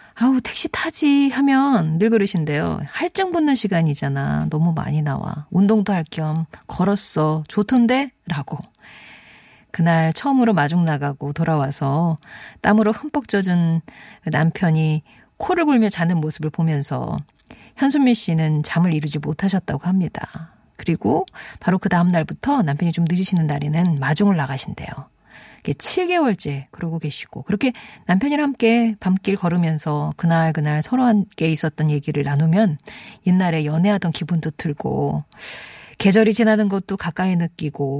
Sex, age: female, 40-59